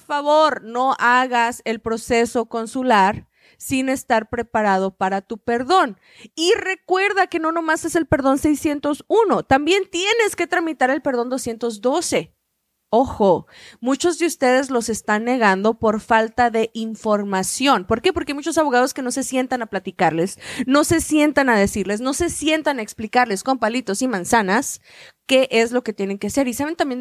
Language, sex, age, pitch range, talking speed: Spanish, female, 20-39, 220-290 Hz, 165 wpm